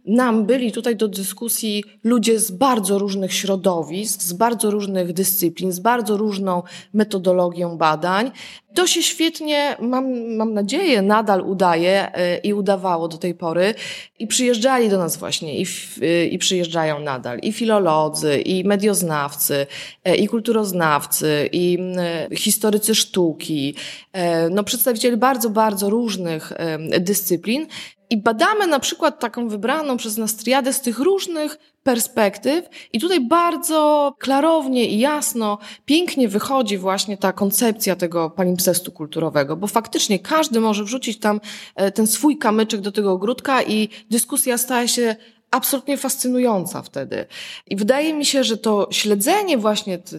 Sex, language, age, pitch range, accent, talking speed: female, Polish, 20-39, 185-245 Hz, native, 135 wpm